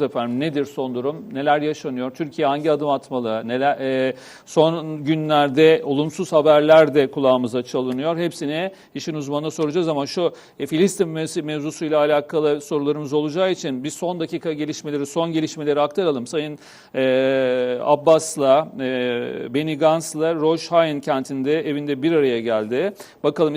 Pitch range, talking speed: 150-170 Hz, 130 wpm